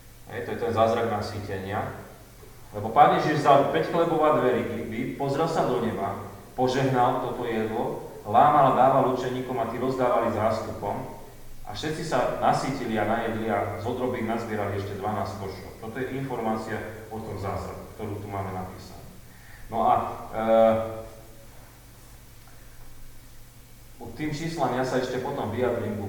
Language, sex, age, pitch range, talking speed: Slovak, male, 30-49, 105-125 Hz, 145 wpm